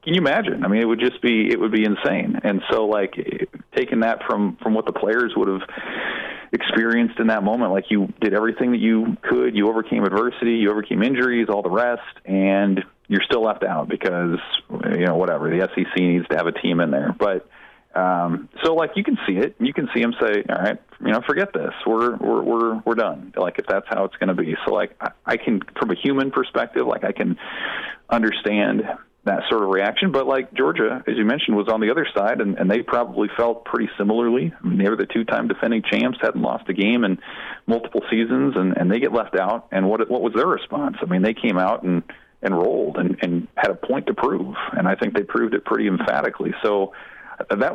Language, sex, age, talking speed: English, male, 30-49, 225 wpm